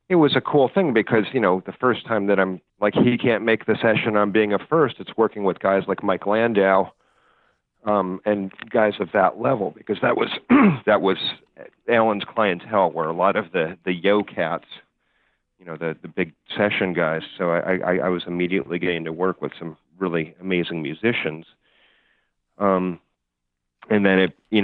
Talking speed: 190 wpm